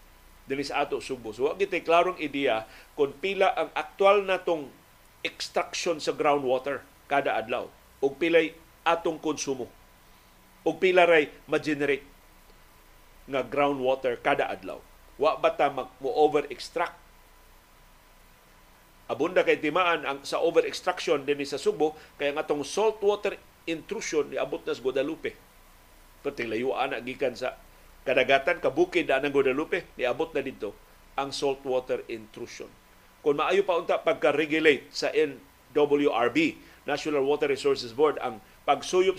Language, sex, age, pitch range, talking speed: Filipino, male, 40-59, 135-205 Hz, 120 wpm